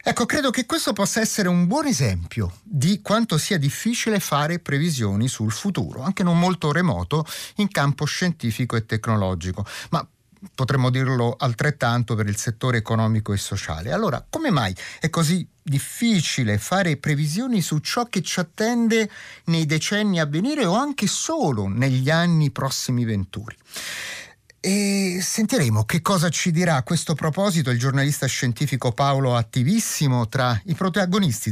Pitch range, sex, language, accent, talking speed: 125-185 Hz, male, Italian, native, 145 wpm